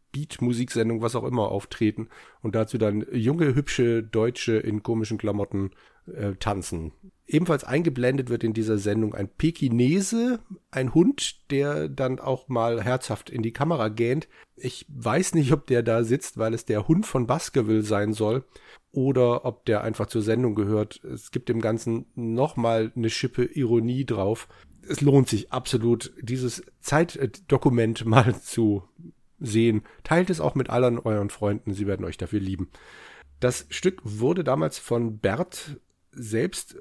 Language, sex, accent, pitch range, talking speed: German, male, German, 110-135 Hz, 155 wpm